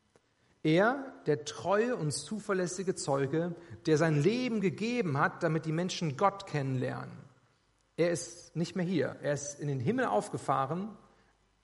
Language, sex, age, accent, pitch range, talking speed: German, male, 40-59, German, 140-175 Hz, 140 wpm